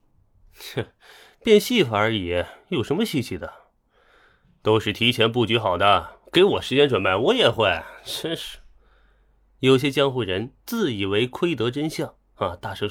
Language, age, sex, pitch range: Chinese, 20-39, male, 105-145 Hz